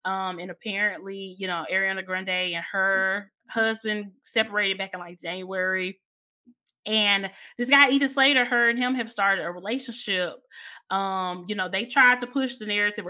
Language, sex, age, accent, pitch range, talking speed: English, female, 20-39, American, 175-235 Hz, 165 wpm